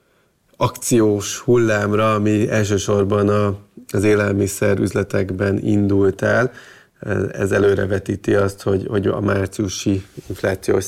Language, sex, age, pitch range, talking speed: Hungarian, male, 30-49, 95-105 Hz, 100 wpm